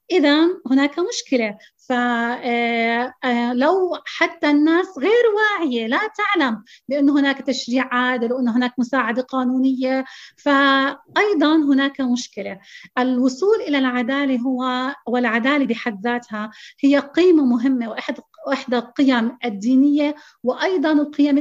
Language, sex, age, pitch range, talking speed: Arabic, female, 30-49, 250-310 Hz, 105 wpm